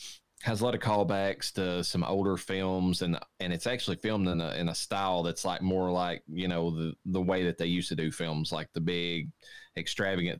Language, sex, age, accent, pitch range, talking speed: English, male, 20-39, American, 85-100 Hz, 220 wpm